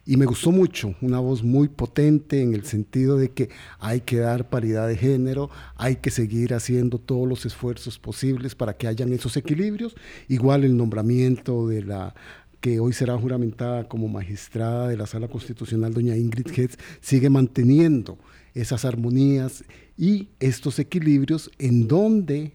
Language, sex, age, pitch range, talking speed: Spanish, male, 50-69, 115-135 Hz, 155 wpm